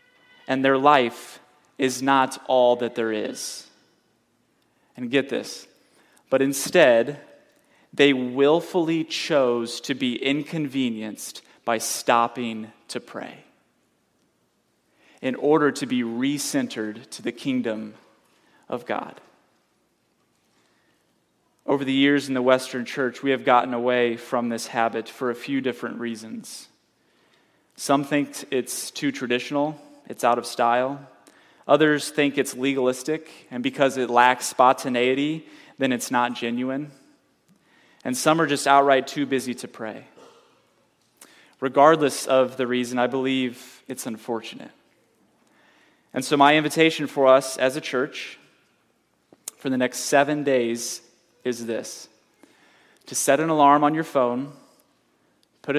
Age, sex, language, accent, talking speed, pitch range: 30-49, male, English, American, 125 wpm, 120-145 Hz